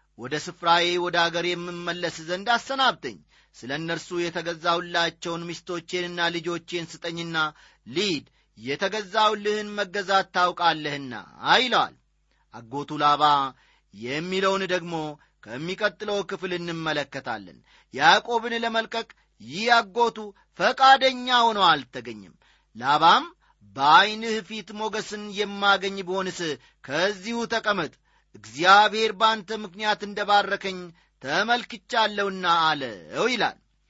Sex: male